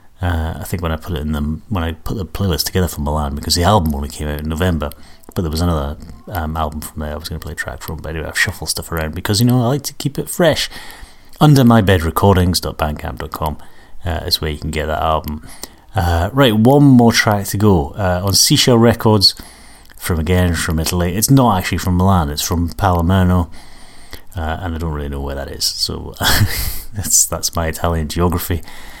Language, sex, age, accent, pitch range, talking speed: English, male, 30-49, British, 80-105 Hz, 215 wpm